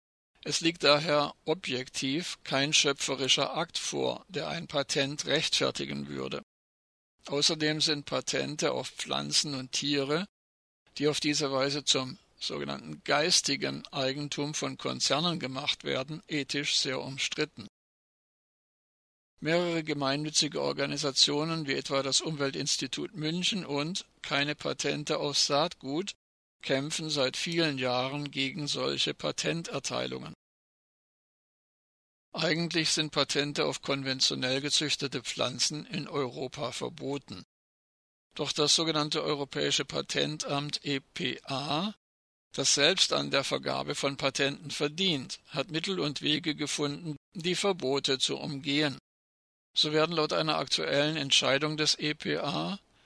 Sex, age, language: male, 50-69, German